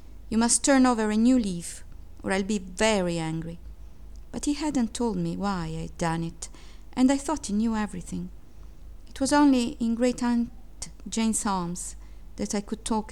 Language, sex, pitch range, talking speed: English, female, 170-240 Hz, 180 wpm